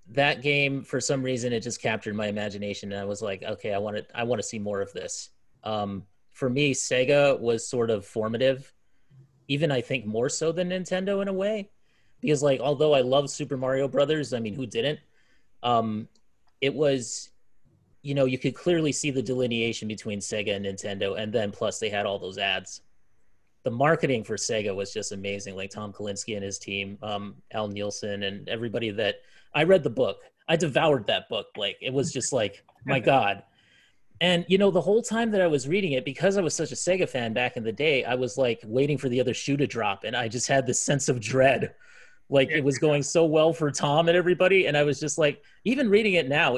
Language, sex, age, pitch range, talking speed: English, male, 30-49, 110-150 Hz, 220 wpm